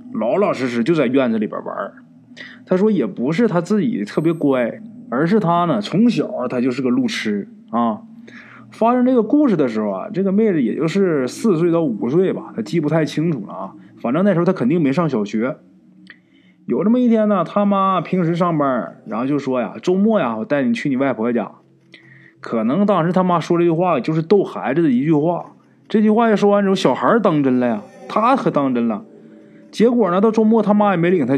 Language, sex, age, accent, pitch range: Chinese, male, 20-39, native, 145-220 Hz